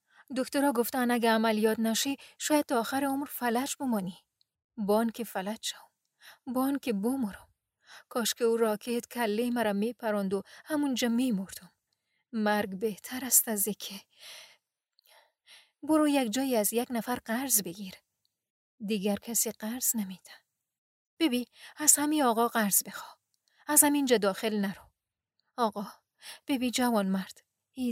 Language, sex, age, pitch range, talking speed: Persian, female, 30-49, 210-255 Hz, 140 wpm